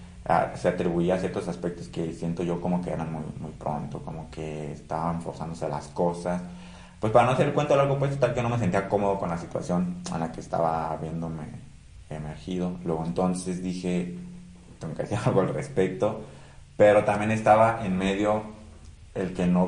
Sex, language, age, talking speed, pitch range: male, Spanish, 30-49, 190 wpm, 85-105 Hz